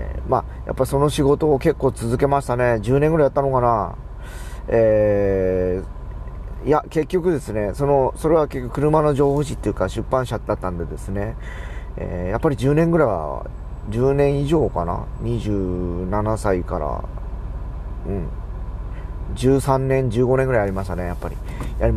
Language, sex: Japanese, male